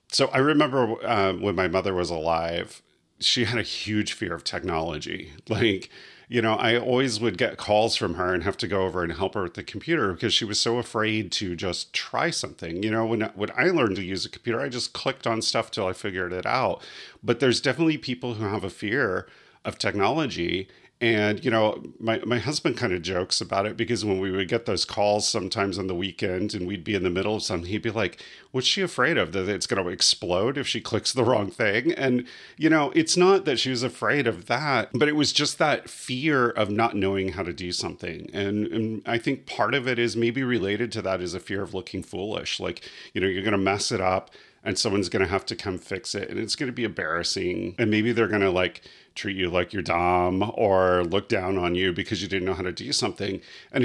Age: 40-59